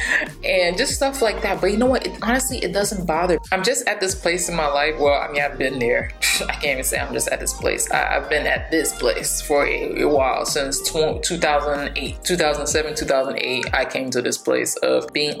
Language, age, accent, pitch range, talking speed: English, 20-39, American, 145-185 Hz, 225 wpm